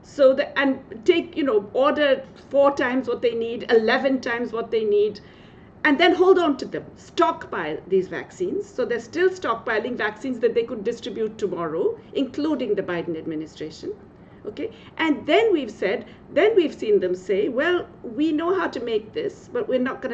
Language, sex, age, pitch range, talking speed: English, female, 50-69, 240-360 Hz, 180 wpm